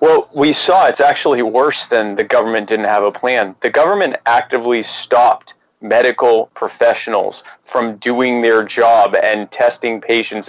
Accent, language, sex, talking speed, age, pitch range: American, English, male, 150 wpm, 30-49, 115-170 Hz